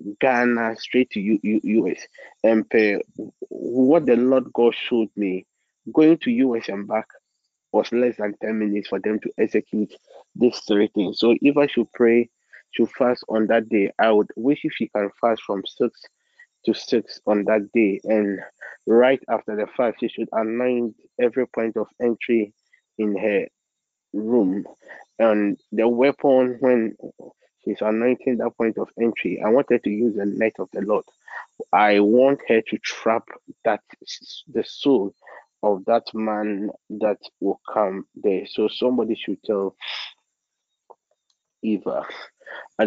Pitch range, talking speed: 105-120 Hz, 155 wpm